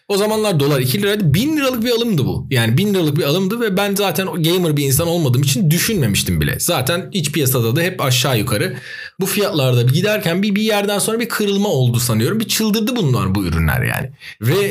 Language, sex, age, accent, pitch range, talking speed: Turkish, male, 40-59, native, 125-190 Hz, 205 wpm